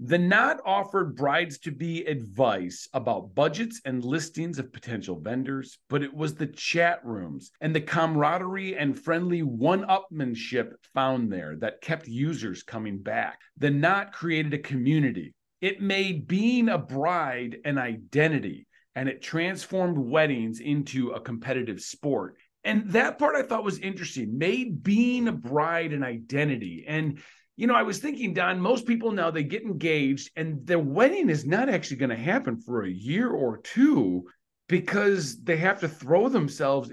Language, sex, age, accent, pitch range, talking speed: English, male, 40-59, American, 135-190 Hz, 160 wpm